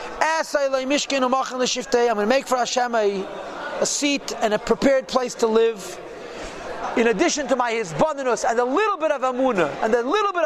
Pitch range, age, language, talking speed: 235-275 Hz, 40-59, English, 170 wpm